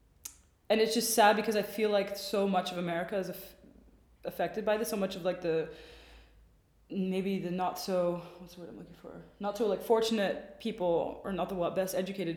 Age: 20-39